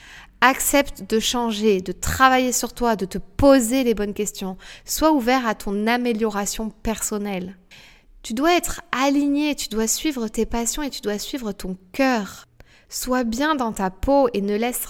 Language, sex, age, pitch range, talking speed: French, female, 20-39, 205-255 Hz, 170 wpm